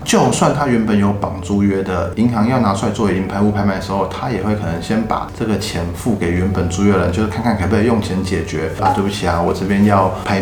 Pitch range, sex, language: 90-110 Hz, male, Chinese